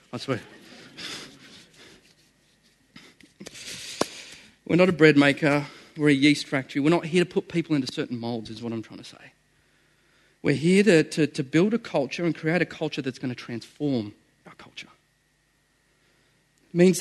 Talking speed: 160 wpm